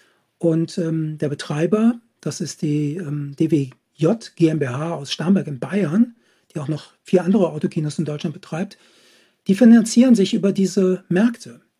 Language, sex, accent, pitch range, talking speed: German, male, German, 155-195 Hz, 145 wpm